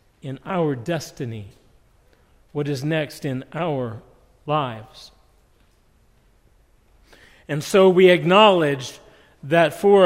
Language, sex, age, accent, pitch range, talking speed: English, male, 50-69, American, 140-180 Hz, 90 wpm